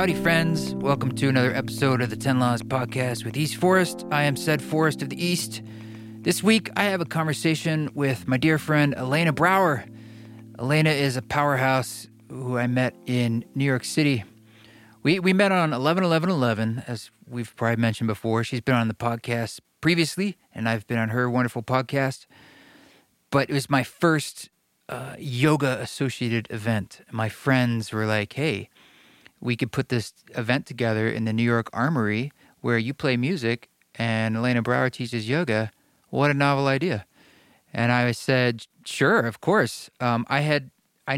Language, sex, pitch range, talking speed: English, male, 115-145 Hz, 170 wpm